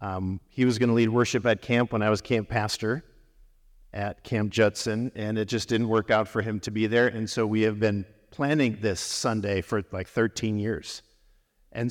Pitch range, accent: 110-135 Hz, American